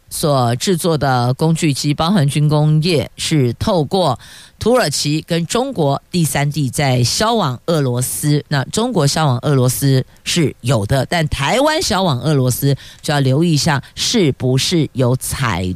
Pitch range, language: 130-175 Hz, Chinese